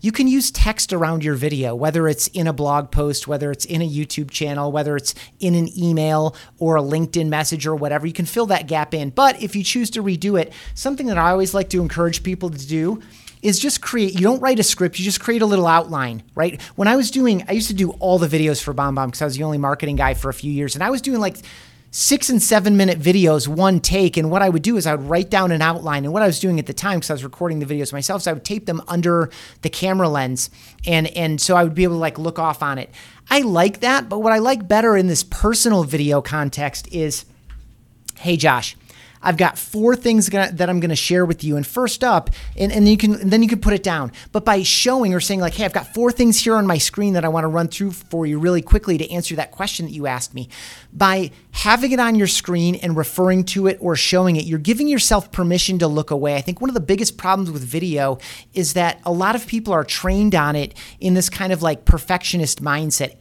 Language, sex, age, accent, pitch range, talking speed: English, male, 30-49, American, 150-200 Hz, 260 wpm